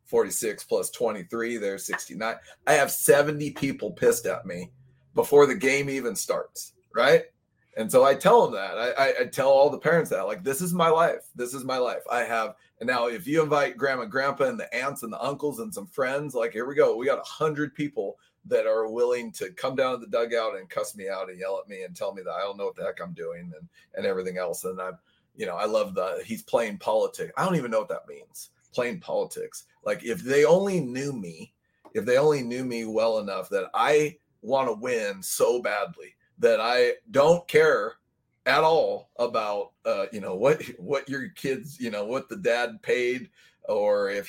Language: English